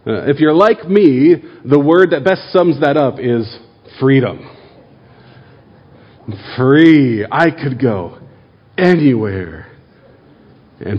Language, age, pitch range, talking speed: English, 40-59, 125-175 Hz, 110 wpm